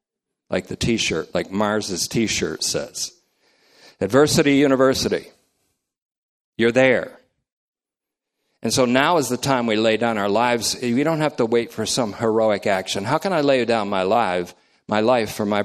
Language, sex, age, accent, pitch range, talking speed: English, male, 50-69, American, 105-130 Hz, 160 wpm